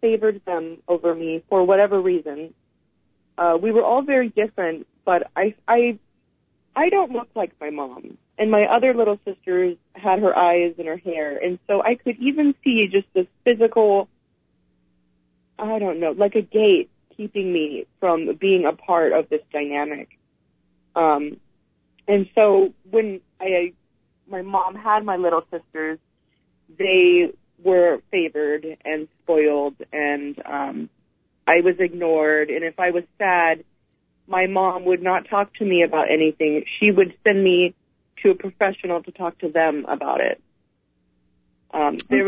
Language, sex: English, female